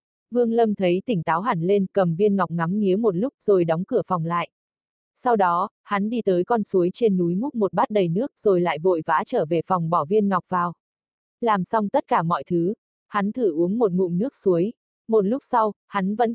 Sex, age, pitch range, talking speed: female, 20-39, 180-225 Hz, 230 wpm